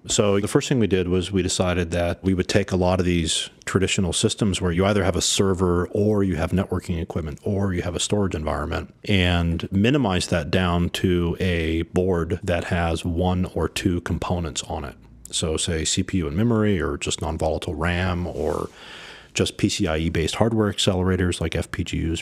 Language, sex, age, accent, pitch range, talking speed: English, male, 40-59, American, 85-95 Hz, 180 wpm